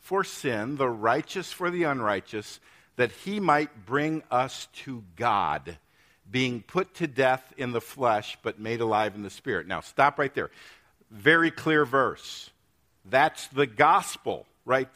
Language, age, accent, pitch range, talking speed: English, 50-69, American, 125-160 Hz, 155 wpm